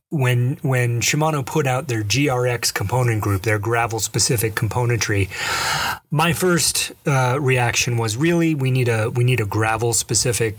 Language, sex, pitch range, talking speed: English, male, 115-150 Hz, 155 wpm